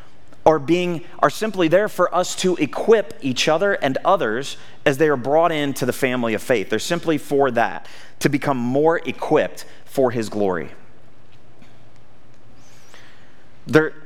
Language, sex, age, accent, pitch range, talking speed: English, male, 30-49, American, 120-150 Hz, 145 wpm